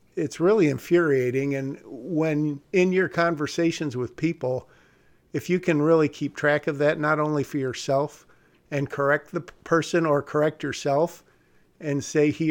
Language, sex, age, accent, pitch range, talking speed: English, male, 50-69, American, 135-155 Hz, 155 wpm